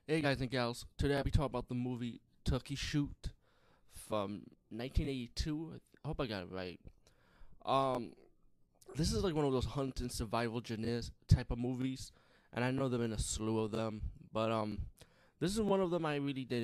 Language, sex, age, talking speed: English, male, 20-39, 195 wpm